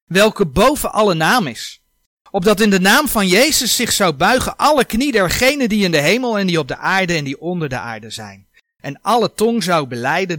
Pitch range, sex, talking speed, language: 170-255 Hz, male, 215 wpm, Dutch